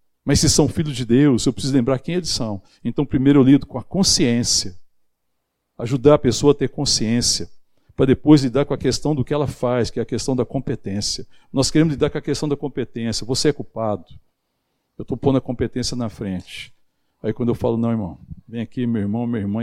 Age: 60-79